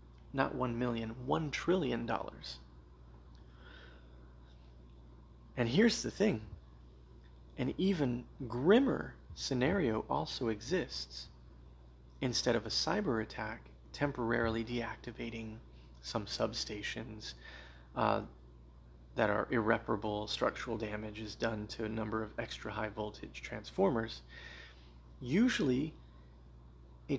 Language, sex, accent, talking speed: English, male, American, 95 wpm